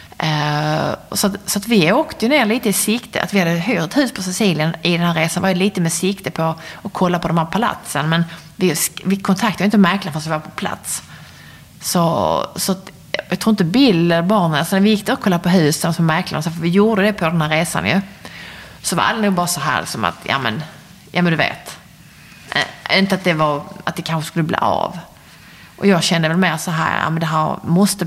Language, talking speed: English, 235 wpm